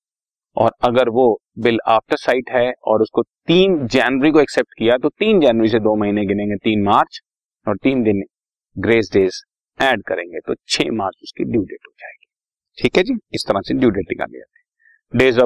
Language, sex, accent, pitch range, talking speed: Hindi, male, native, 110-170 Hz, 150 wpm